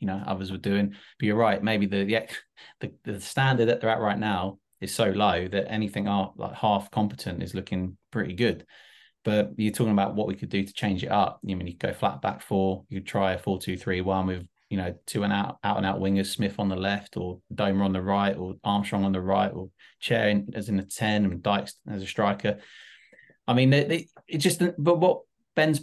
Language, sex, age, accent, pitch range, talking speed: English, male, 20-39, British, 100-120 Hz, 230 wpm